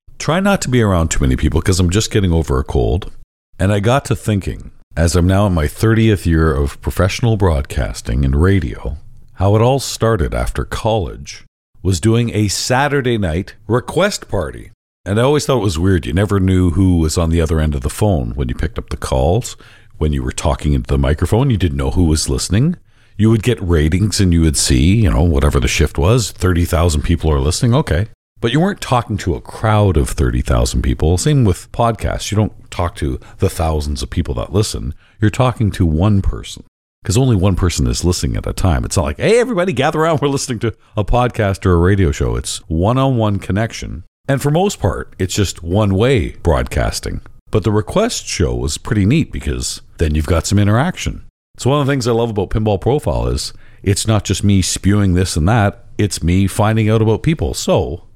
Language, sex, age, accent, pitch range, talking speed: English, male, 50-69, American, 80-110 Hz, 210 wpm